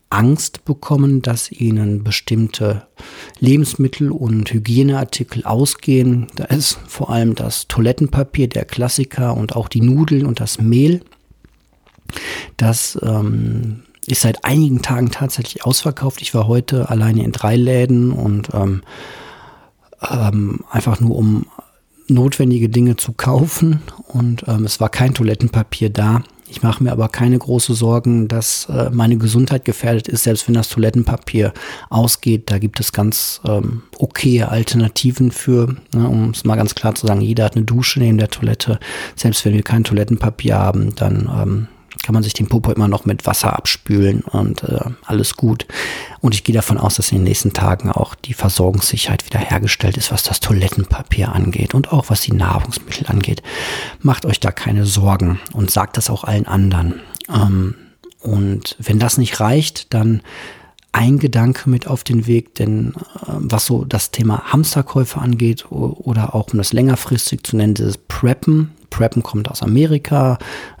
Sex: male